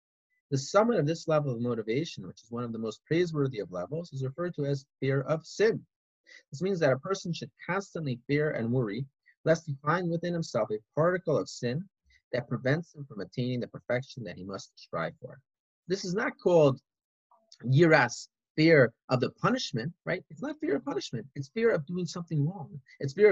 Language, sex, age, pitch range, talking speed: English, male, 30-49, 125-175 Hz, 195 wpm